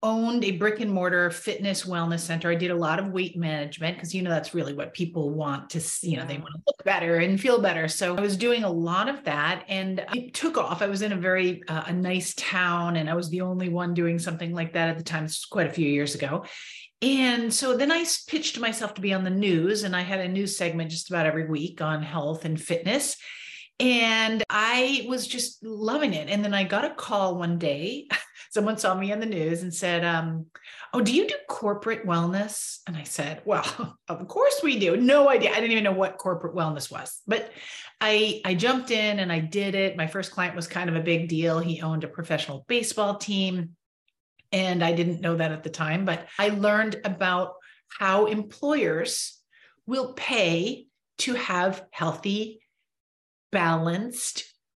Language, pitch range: English, 170-215 Hz